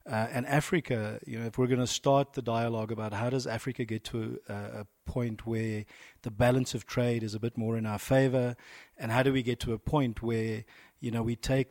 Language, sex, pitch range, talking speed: English, male, 110-125 Hz, 235 wpm